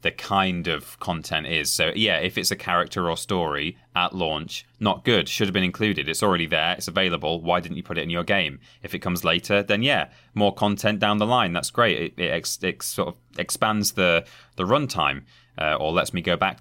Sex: male